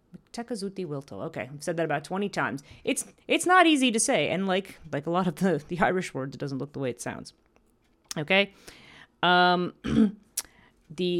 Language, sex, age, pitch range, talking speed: English, female, 40-59, 140-180 Hz, 175 wpm